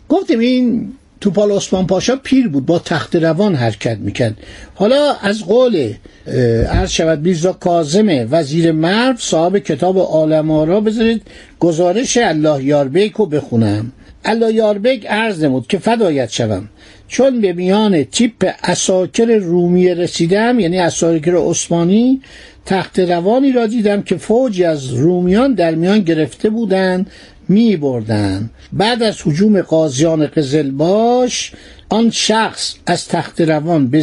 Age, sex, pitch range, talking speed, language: 60-79, male, 160-215 Hz, 125 wpm, Persian